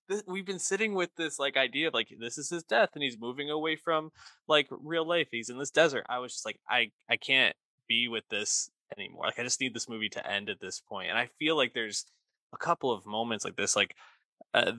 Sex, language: male, English